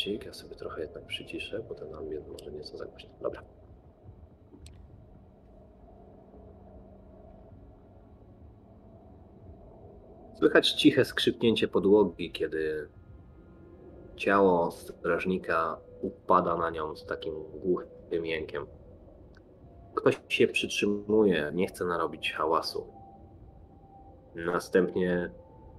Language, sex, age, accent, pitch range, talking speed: Polish, male, 30-49, native, 90-130 Hz, 80 wpm